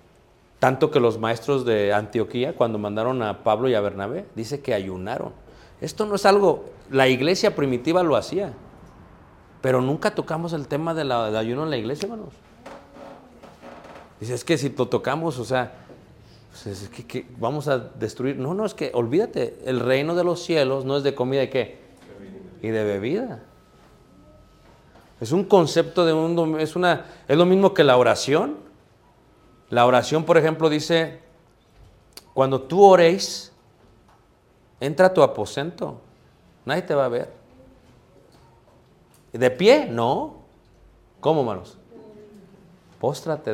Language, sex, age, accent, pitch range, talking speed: Spanish, male, 40-59, Mexican, 115-165 Hz, 145 wpm